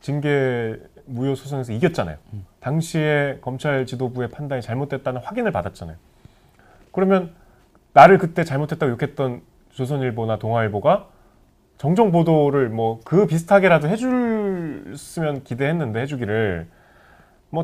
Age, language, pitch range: 30-49, Korean, 110-170 Hz